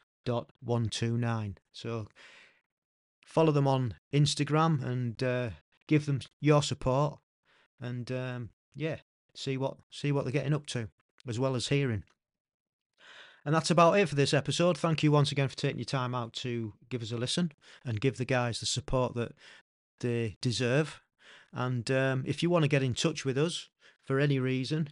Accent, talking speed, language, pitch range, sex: British, 180 wpm, English, 120-145 Hz, male